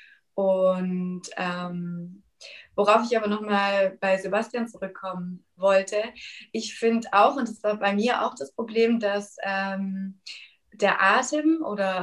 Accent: German